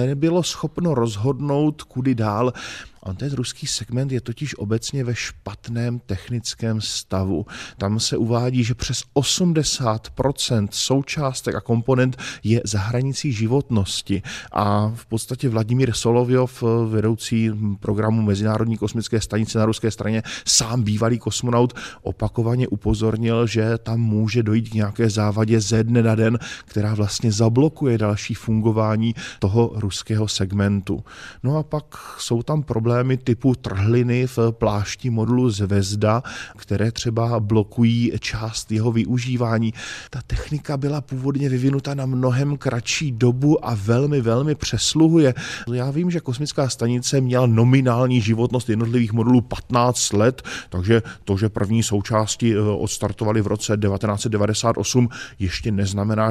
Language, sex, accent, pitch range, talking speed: Czech, male, native, 110-130 Hz, 125 wpm